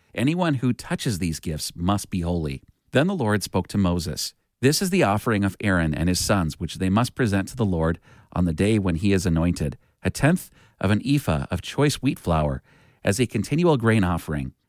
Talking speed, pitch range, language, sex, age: 210 wpm, 90-130 Hz, English, male, 40-59